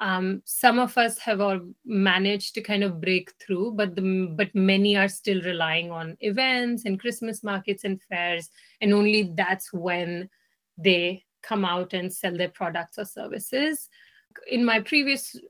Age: 30-49